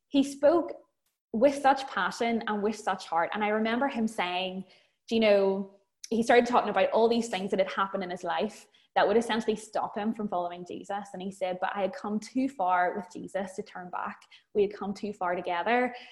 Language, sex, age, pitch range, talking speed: English, female, 20-39, 195-245 Hz, 215 wpm